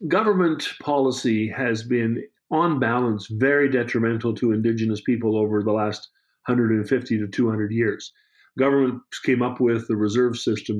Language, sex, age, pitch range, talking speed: English, male, 50-69, 115-140 Hz, 140 wpm